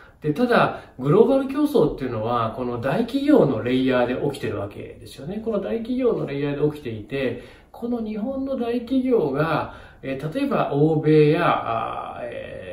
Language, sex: Japanese, male